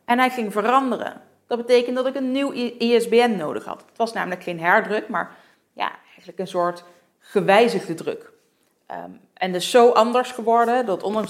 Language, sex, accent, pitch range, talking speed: Dutch, female, Dutch, 180-230 Hz, 175 wpm